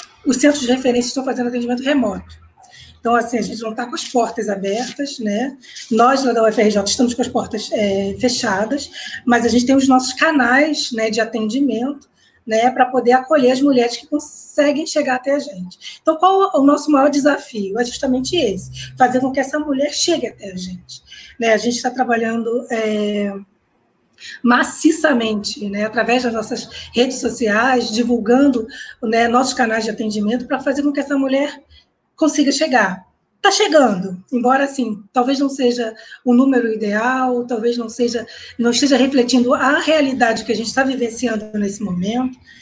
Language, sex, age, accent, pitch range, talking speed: Portuguese, female, 20-39, Brazilian, 220-270 Hz, 170 wpm